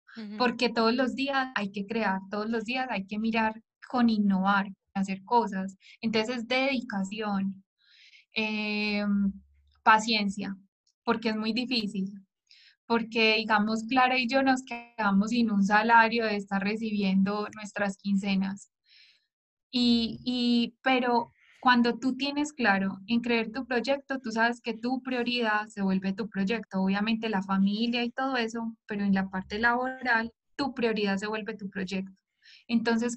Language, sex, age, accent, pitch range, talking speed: Spanish, female, 10-29, Colombian, 200-240 Hz, 140 wpm